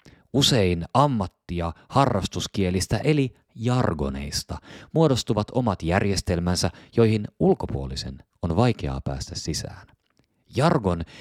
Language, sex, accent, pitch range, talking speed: Finnish, male, native, 80-115 Hz, 80 wpm